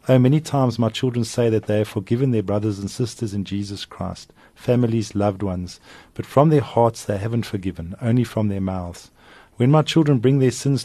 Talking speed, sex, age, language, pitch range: 205 wpm, male, 50-69, English, 105-125 Hz